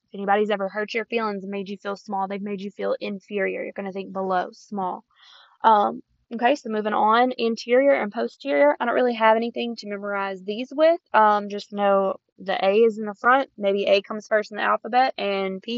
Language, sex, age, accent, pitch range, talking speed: English, female, 20-39, American, 200-235 Hz, 215 wpm